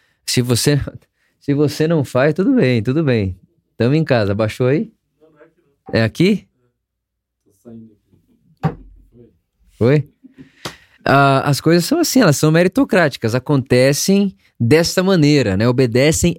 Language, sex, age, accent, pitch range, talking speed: Portuguese, male, 20-39, Brazilian, 110-155 Hz, 115 wpm